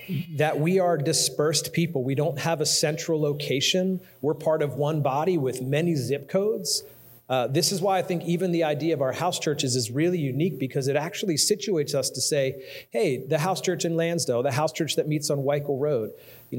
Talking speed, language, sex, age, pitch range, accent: 210 wpm, English, male, 40-59, 130-165 Hz, American